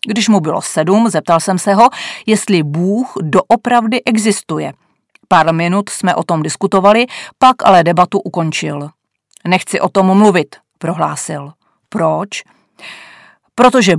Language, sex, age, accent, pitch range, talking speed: Czech, female, 40-59, native, 170-220 Hz, 125 wpm